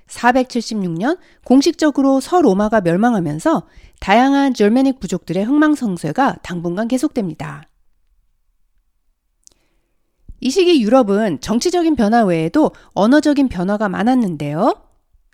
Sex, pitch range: female, 180-280 Hz